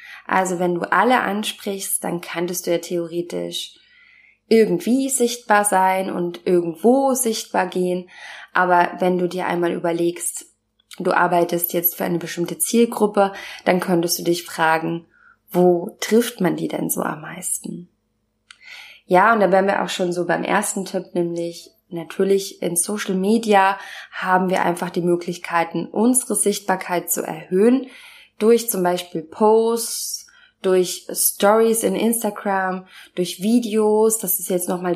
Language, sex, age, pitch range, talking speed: German, female, 20-39, 175-215 Hz, 140 wpm